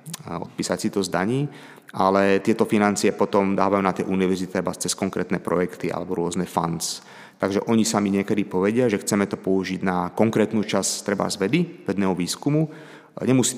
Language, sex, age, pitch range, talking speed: Slovak, male, 30-49, 95-125 Hz, 165 wpm